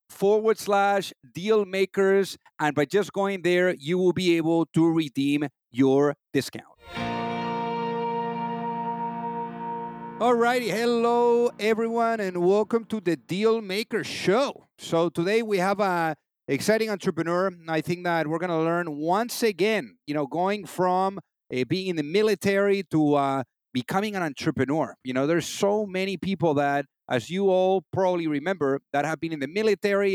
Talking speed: 155 wpm